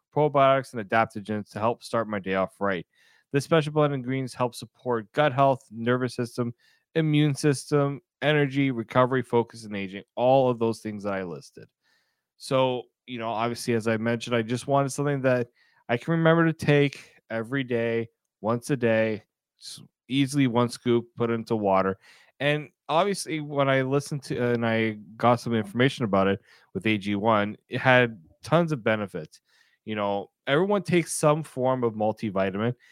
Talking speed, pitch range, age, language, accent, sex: 165 wpm, 115-145 Hz, 30-49, English, American, male